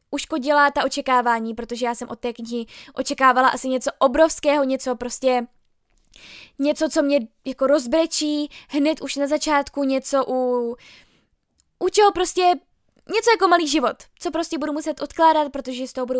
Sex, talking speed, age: female, 155 wpm, 10-29